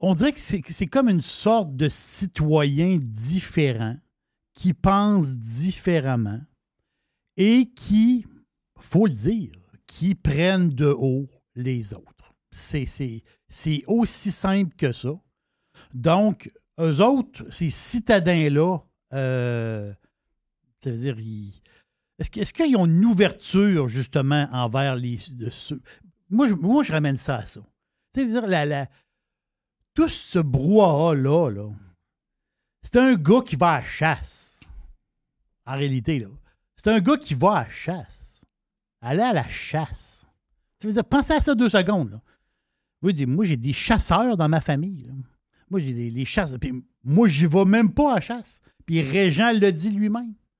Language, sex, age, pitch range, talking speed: French, male, 60-79, 130-205 Hz, 145 wpm